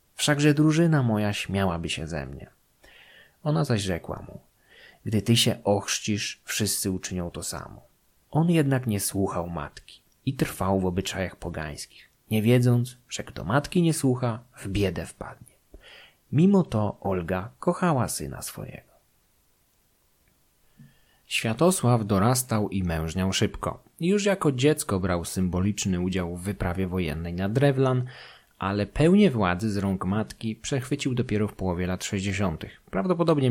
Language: Polish